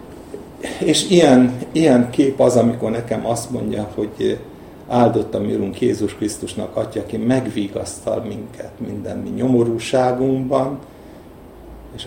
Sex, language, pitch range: male, Hungarian, 110-130 Hz